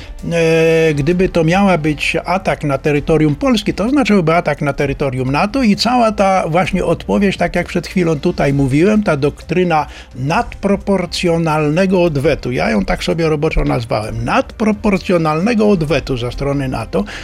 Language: Polish